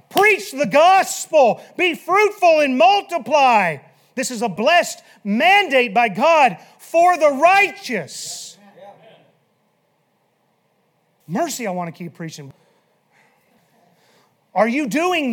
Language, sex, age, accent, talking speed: English, male, 40-59, American, 100 wpm